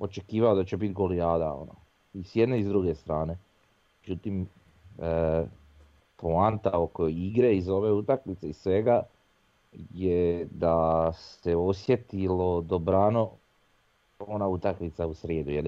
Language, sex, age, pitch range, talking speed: Croatian, male, 40-59, 85-100 Hz, 125 wpm